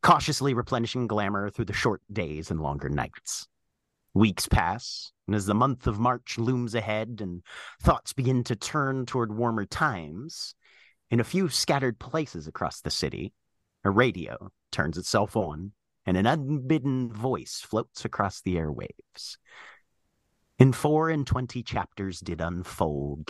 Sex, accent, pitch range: male, American, 90-125 Hz